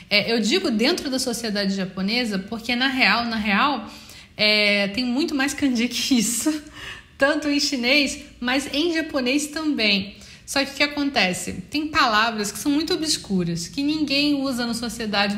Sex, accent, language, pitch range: female, Brazilian, Portuguese, 215-290 Hz